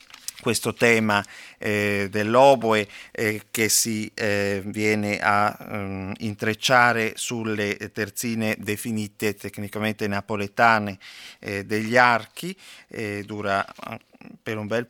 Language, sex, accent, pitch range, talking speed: Italian, male, native, 105-120 Hz, 95 wpm